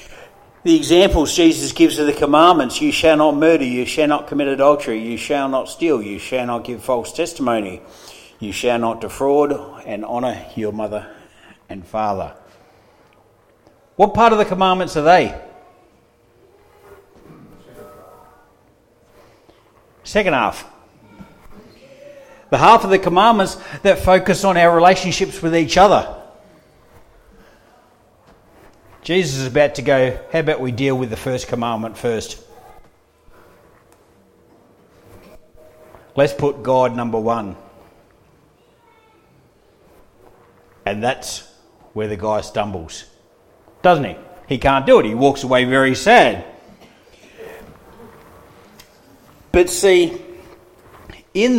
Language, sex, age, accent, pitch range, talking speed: English, male, 60-79, Australian, 120-190 Hz, 115 wpm